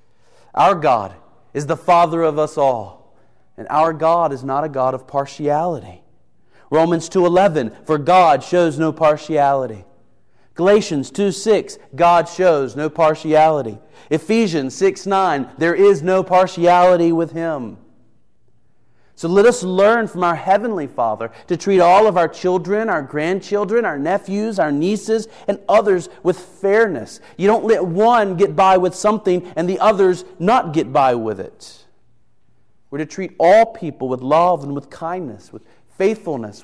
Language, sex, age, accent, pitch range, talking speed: English, male, 40-59, American, 130-180 Hz, 145 wpm